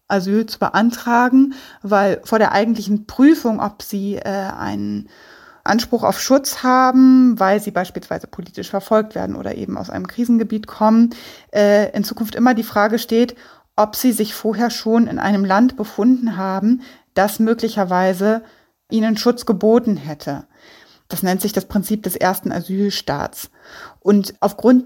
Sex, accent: female, German